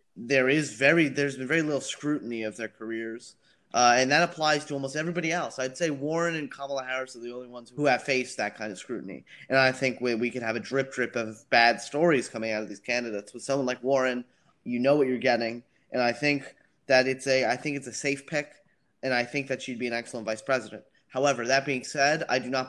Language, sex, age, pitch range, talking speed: English, male, 20-39, 120-145 Hz, 245 wpm